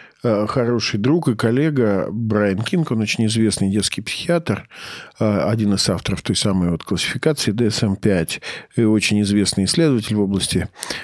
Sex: male